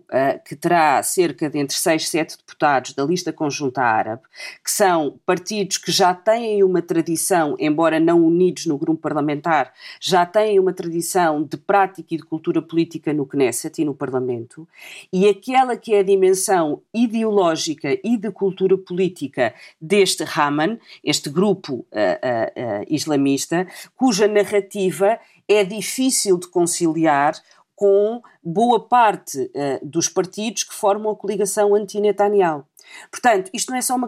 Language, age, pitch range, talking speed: Portuguese, 40-59, 160-210 Hz, 140 wpm